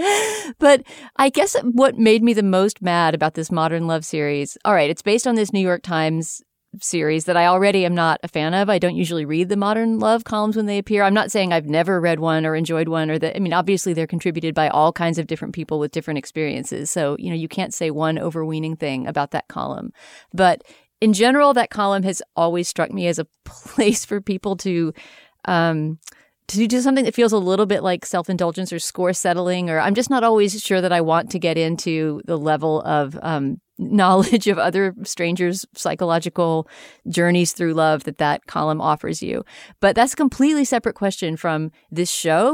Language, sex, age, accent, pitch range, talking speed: English, female, 40-59, American, 160-205 Hz, 210 wpm